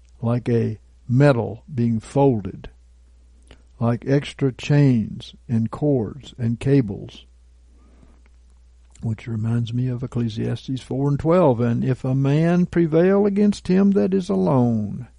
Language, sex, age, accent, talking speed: English, male, 60-79, American, 120 wpm